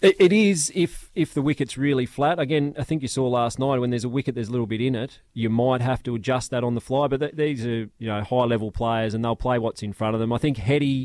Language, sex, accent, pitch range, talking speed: English, male, Australian, 110-125 Hz, 295 wpm